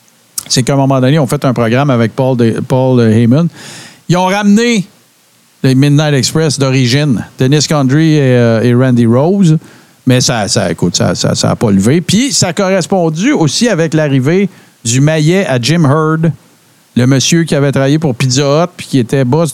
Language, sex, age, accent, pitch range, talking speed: French, male, 50-69, Canadian, 120-155 Hz, 185 wpm